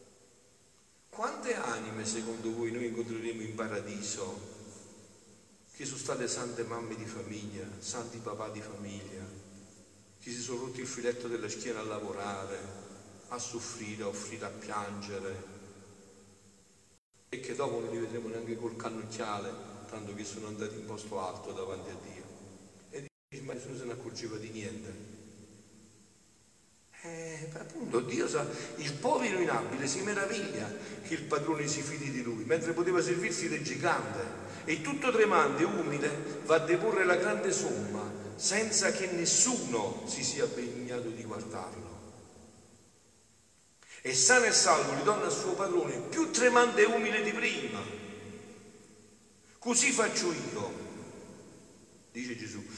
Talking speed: 140 wpm